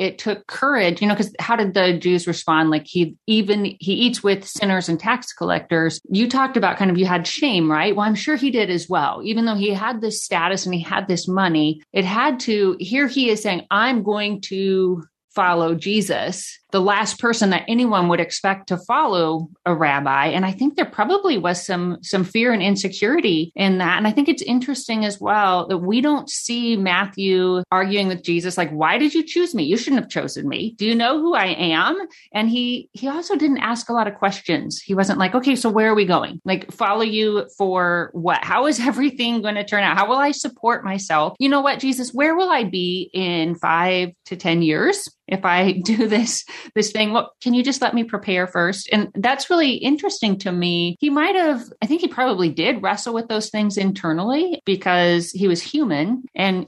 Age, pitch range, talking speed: 30-49, 180-240 Hz, 215 wpm